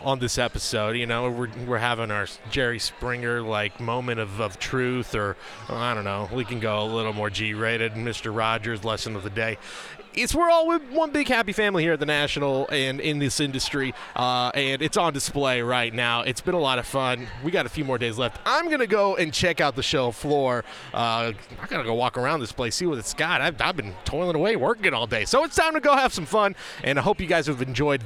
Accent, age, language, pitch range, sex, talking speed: American, 30-49, English, 120-165 Hz, male, 245 wpm